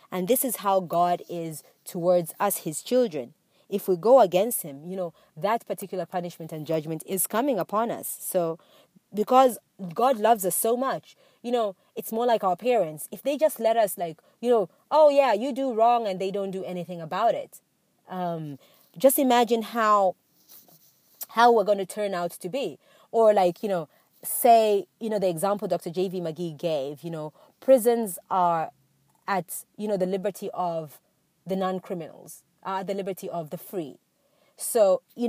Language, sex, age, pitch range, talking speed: English, female, 30-49, 175-225 Hz, 180 wpm